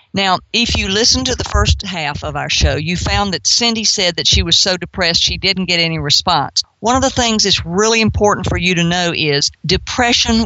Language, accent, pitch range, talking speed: English, American, 165-195 Hz, 225 wpm